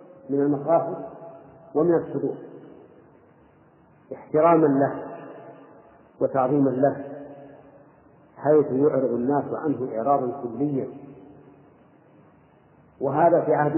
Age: 50-69